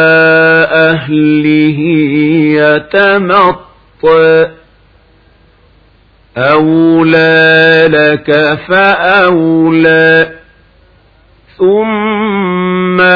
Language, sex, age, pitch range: Arabic, male, 50-69, 160-185 Hz